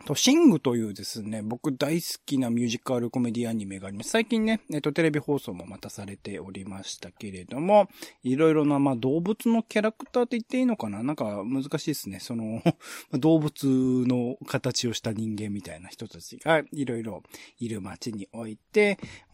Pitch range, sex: 105-160 Hz, male